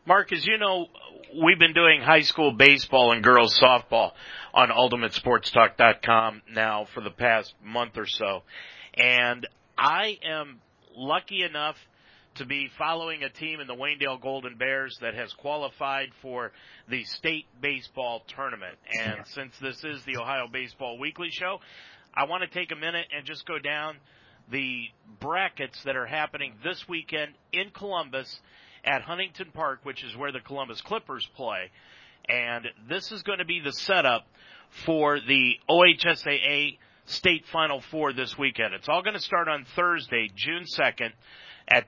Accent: American